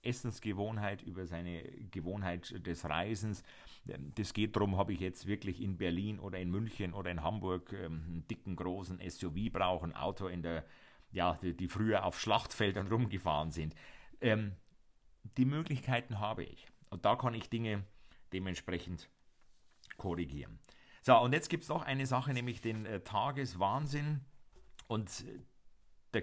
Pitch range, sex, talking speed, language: 90-120 Hz, male, 150 wpm, German